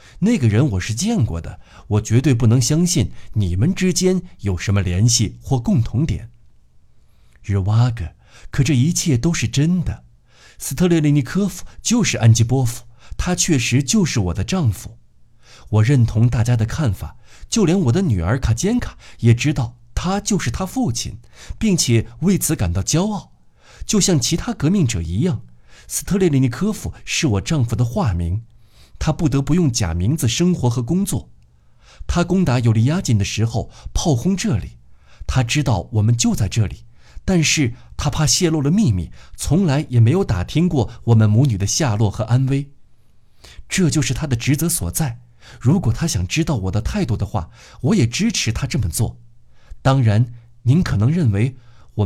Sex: male